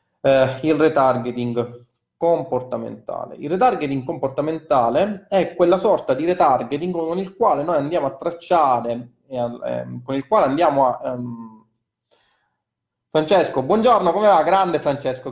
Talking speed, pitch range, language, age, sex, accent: 135 wpm, 120-170 Hz, Italian, 20-39, male, native